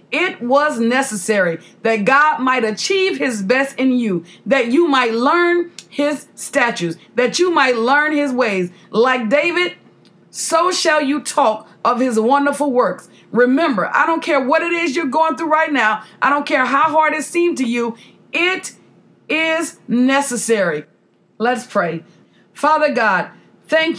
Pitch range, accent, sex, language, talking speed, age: 230-290 Hz, American, female, English, 155 wpm, 40-59